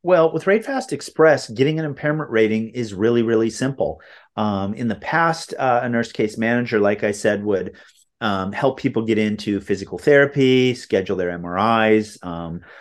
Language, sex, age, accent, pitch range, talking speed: English, male, 40-59, American, 105-135 Hz, 170 wpm